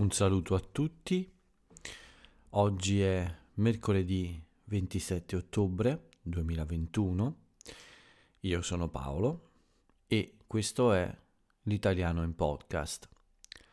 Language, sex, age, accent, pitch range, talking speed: Italian, male, 40-59, native, 85-100 Hz, 85 wpm